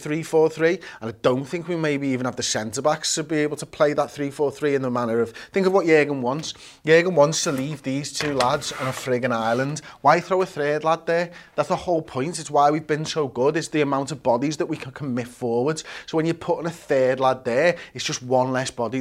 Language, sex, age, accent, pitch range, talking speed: English, male, 30-49, British, 125-155 Hz, 255 wpm